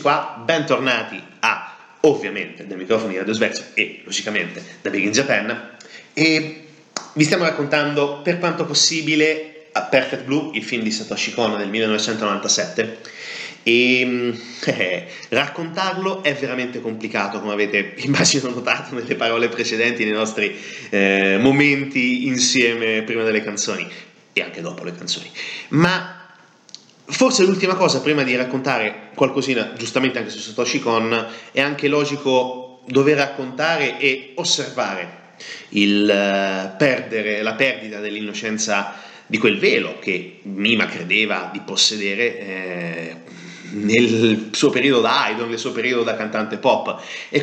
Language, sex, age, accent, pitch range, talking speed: Italian, male, 30-49, native, 110-145 Hz, 130 wpm